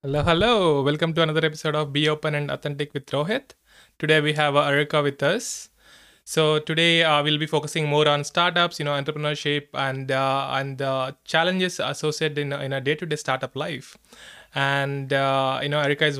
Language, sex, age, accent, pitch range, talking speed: English, male, 20-39, Indian, 130-150 Hz, 190 wpm